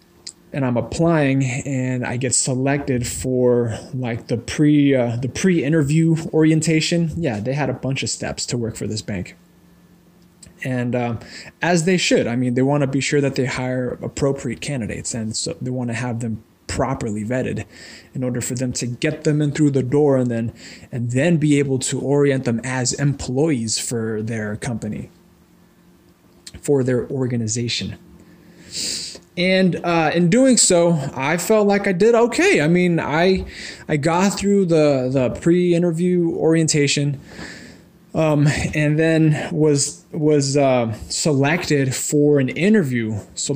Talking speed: 155 wpm